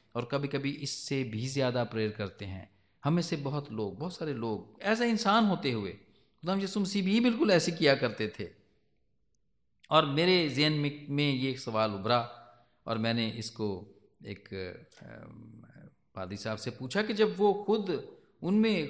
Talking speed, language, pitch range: 150 wpm, English, 110-175 Hz